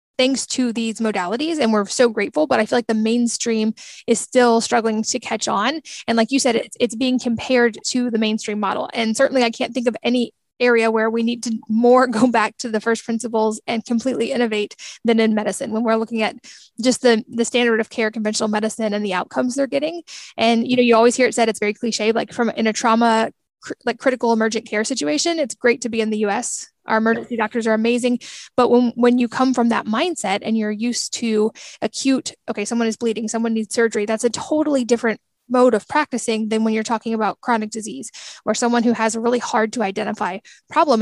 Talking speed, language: 220 wpm, English